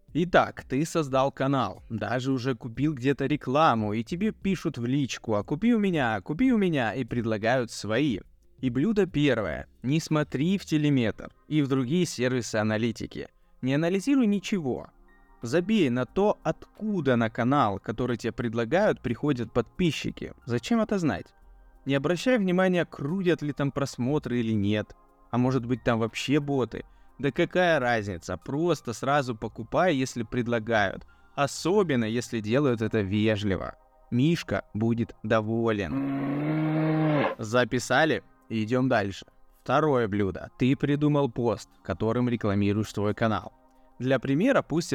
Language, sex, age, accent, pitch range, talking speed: Russian, male, 20-39, native, 115-150 Hz, 130 wpm